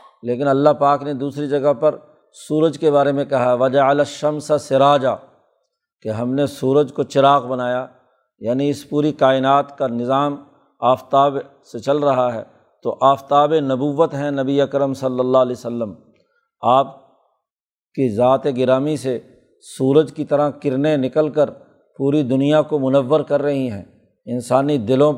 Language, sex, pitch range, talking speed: Urdu, male, 135-150 Hz, 155 wpm